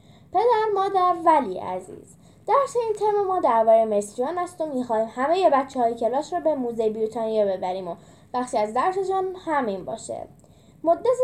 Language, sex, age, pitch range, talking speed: Persian, female, 10-29, 225-350 Hz, 160 wpm